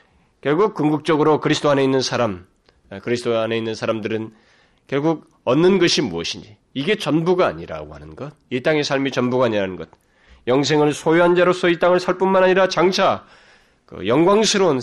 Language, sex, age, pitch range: Korean, male, 40-59, 110-175 Hz